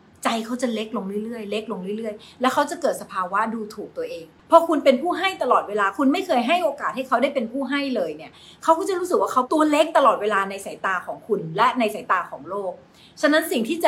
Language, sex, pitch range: Thai, female, 210-300 Hz